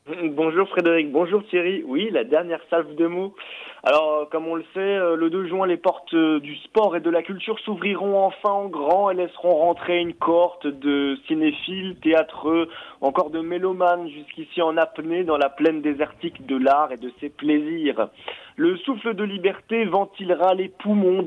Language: French